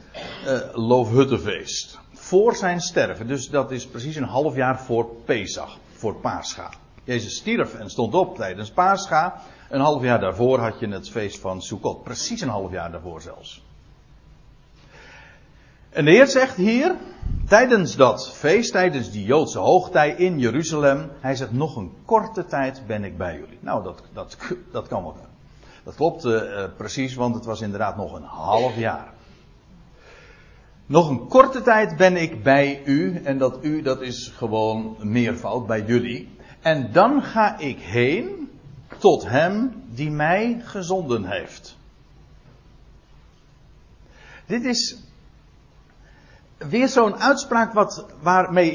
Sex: male